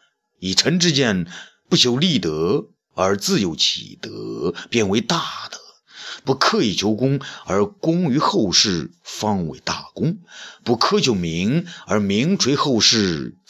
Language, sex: Chinese, male